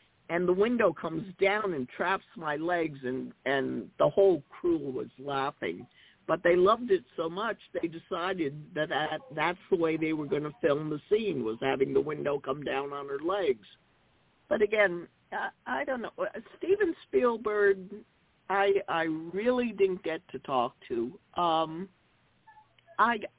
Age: 50-69